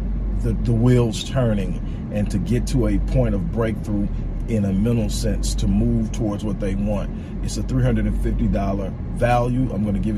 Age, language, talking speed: 40-59, English, 175 wpm